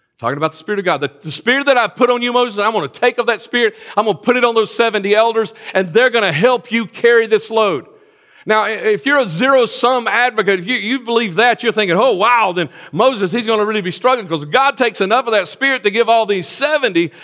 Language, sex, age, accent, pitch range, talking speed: English, male, 50-69, American, 210-270 Hz, 265 wpm